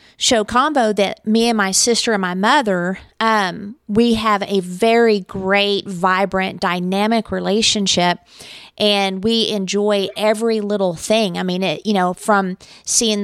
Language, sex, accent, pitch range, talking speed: English, female, American, 190-220 Hz, 145 wpm